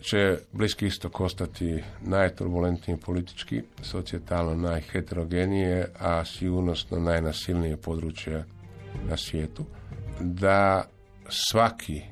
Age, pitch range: 50-69, 85-100 Hz